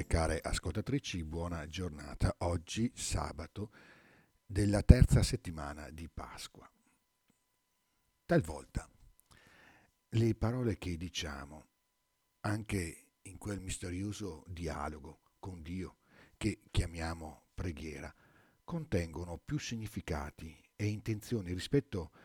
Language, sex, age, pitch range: Italian, male, 50-69, 85-110 Hz